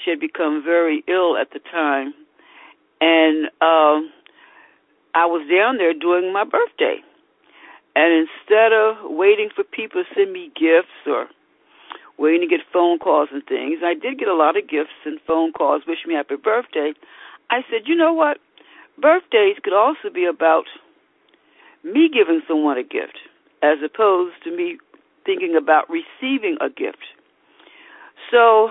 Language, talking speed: English, 155 wpm